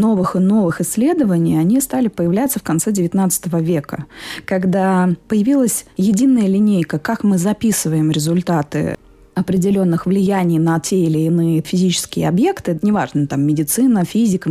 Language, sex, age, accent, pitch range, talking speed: Russian, female, 20-39, native, 160-210 Hz, 130 wpm